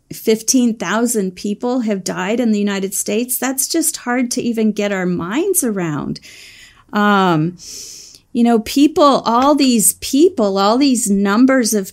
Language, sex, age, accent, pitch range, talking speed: English, female, 40-59, American, 190-250 Hz, 140 wpm